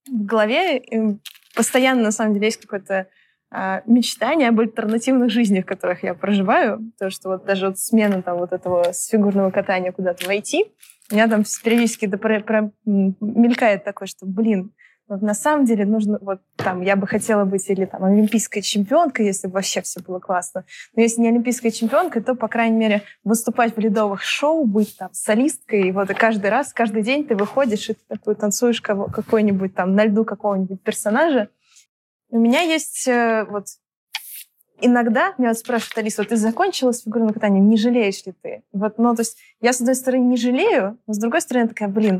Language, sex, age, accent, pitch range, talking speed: Russian, female, 20-39, native, 200-235 Hz, 190 wpm